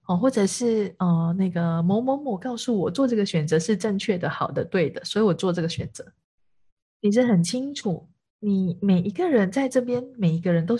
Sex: female